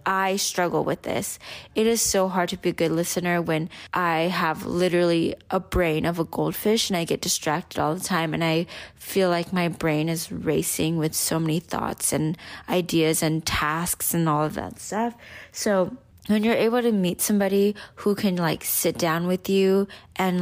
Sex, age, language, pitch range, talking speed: female, 20-39, English, 170-200 Hz, 190 wpm